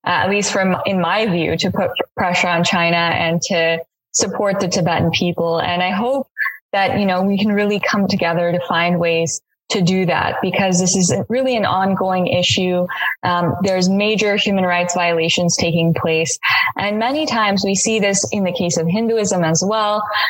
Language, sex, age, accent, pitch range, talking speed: English, female, 20-39, American, 170-195 Hz, 190 wpm